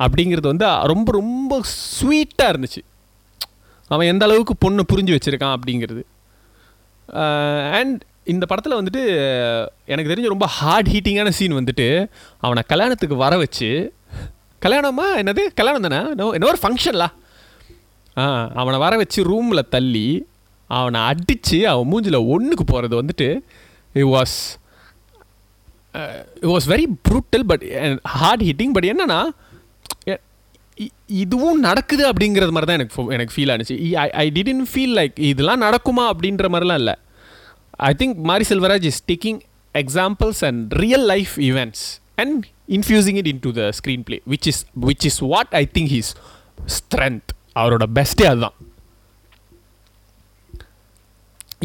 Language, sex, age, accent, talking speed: Tamil, male, 30-49, native, 110 wpm